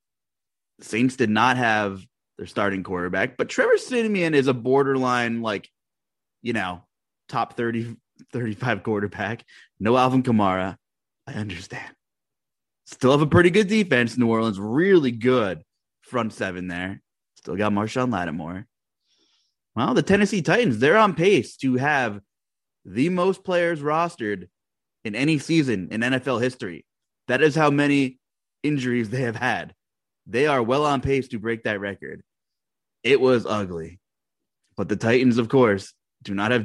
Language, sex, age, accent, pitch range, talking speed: English, male, 20-39, American, 105-145 Hz, 145 wpm